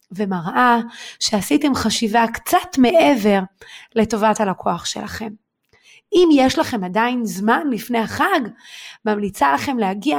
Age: 30-49